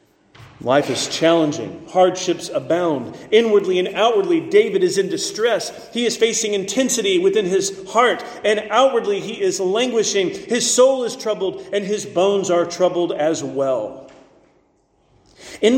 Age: 40-59